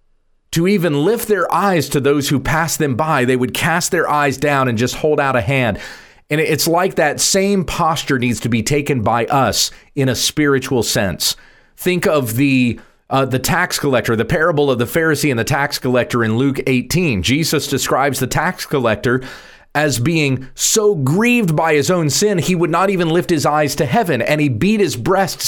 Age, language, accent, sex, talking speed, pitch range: 40-59, English, American, male, 200 wpm, 120-160 Hz